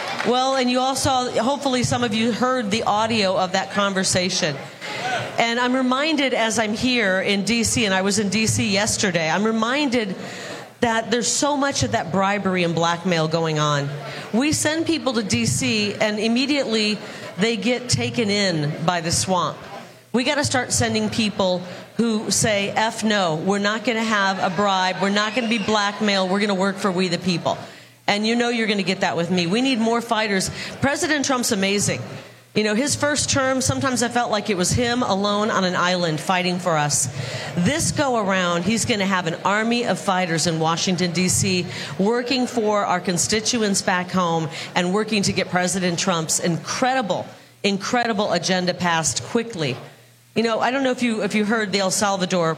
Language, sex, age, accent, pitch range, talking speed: English, female, 40-59, American, 180-230 Hz, 190 wpm